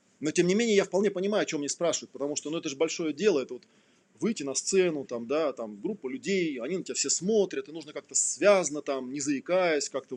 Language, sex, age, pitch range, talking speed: Russian, male, 20-39, 140-200 Hz, 240 wpm